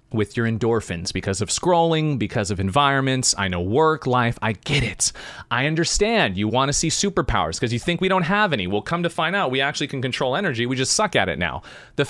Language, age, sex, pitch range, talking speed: English, 30-49, male, 115-175 Hz, 235 wpm